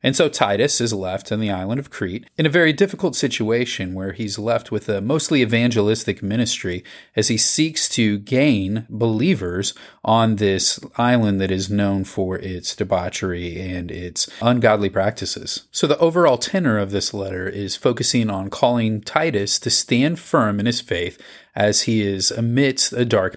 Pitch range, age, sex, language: 100-120 Hz, 30-49, male, English